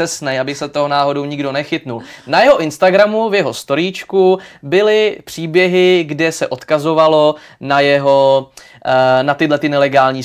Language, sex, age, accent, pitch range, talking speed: Czech, male, 20-39, native, 135-165 Hz, 140 wpm